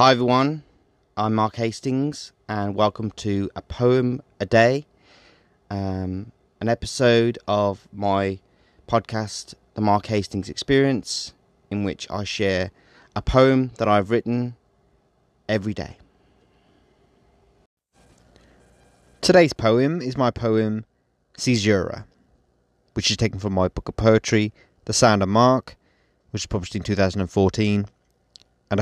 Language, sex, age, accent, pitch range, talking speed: English, male, 30-49, British, 85-125 Hz, 120 wpm